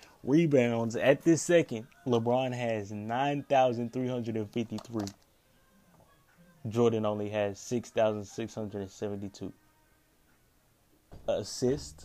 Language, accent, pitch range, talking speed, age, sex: English, American, 110-135 Hz, 55 wpm, 20-39, male